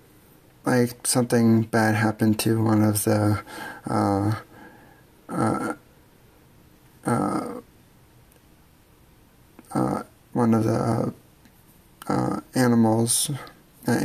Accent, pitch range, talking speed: American, 110-120 Hz, 80 wpm